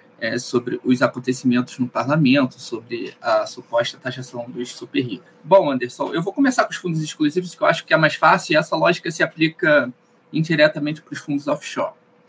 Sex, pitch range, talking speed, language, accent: male, 155-205 Hz, 190 wpm, Portuguese, Brazilian